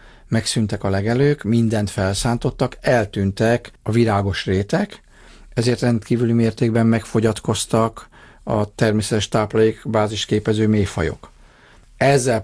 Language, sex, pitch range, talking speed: Hungarian, male, 100-120 Hz, 90 wpm